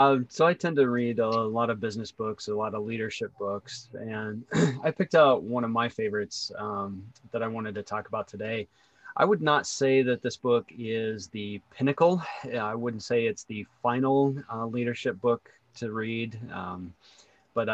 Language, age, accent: English, 30-49, American